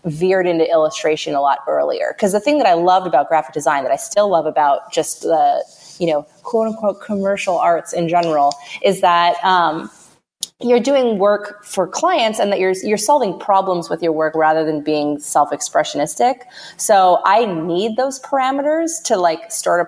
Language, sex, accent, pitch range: English, female, American, 160-220 Hz